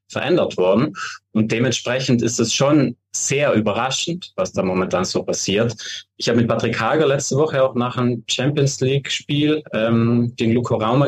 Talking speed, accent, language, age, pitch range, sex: 155 wpm, German, German, 20-39, 110-150 Hz, male